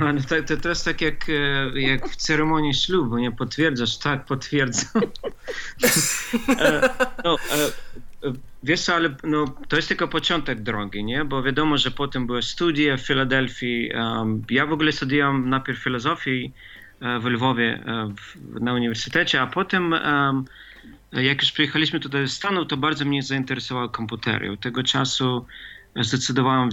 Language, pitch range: Polish, 120-150 Hz